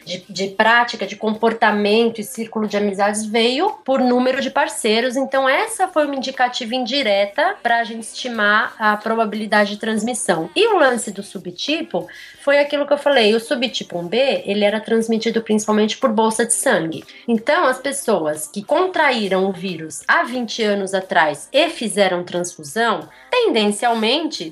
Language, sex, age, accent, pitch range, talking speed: Portuguese, female, 20-39, Brazilian, 200-270 Hz, 155 wpm